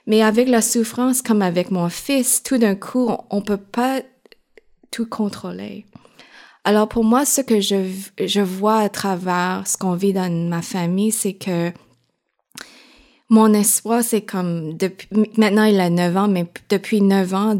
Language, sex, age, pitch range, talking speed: French, female, 20-39, 180-220 Hz, 165 wpm